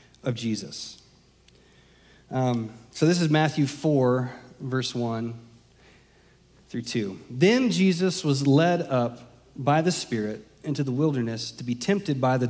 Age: 30-49